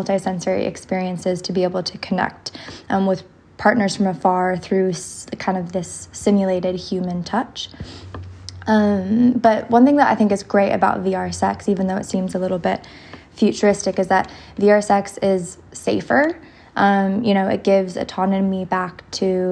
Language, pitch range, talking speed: English, 185-205 Hz, 165 wpm